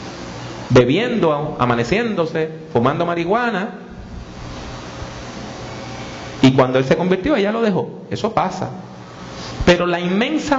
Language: English